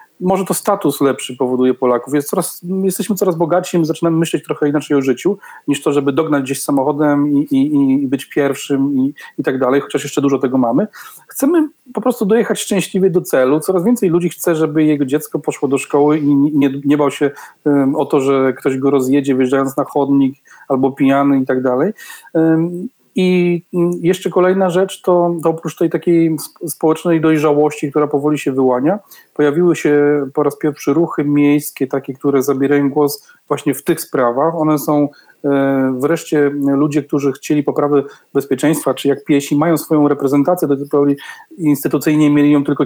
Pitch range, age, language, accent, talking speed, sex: 140-170 Hz, 40-59, Polish, native, 170 wpm, male